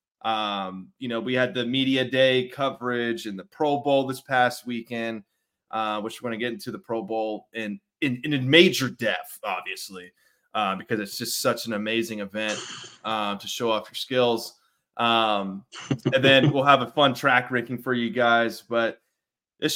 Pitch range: 115-135 Hz